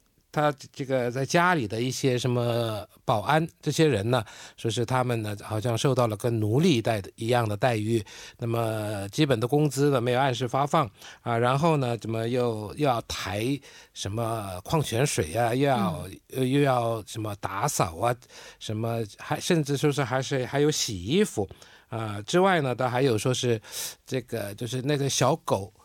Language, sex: Korean, male